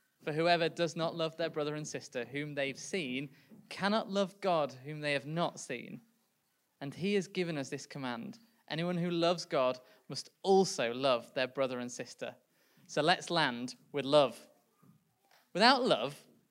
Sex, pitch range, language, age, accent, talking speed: male, 165-220 Hz, English, 20-39, British, 165 wpm